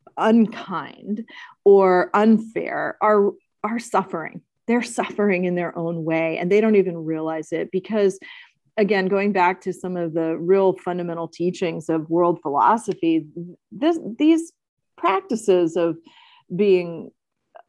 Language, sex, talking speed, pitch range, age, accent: English, female, 125 wpm, 165-210 Hz, 40-59, American